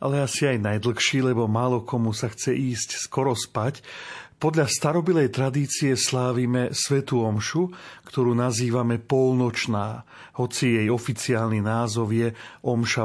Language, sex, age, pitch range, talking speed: Slovak, male, 40-59, 120-140 Hz, 125 wpm